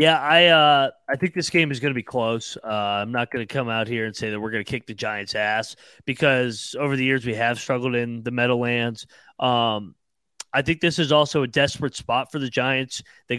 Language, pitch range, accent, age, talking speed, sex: English, 125-150 Hz, American, 30-49, 240 wpm, male